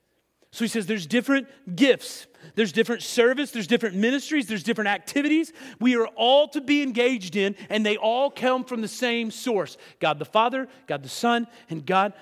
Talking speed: 185 wpm